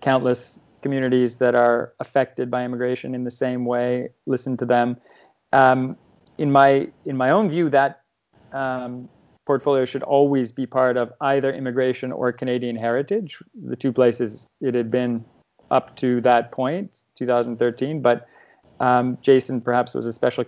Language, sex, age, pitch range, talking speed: English, male, 30-49, 120-135 Hz, 150 wpm